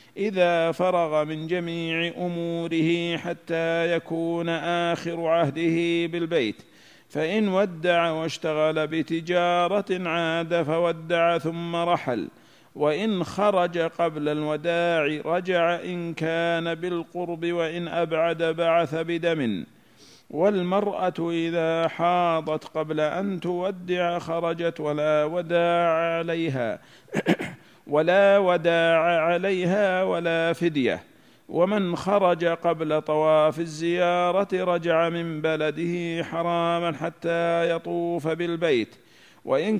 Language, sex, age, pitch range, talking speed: Arabic, male, 50-69, 165-175 Hz, 85 wpm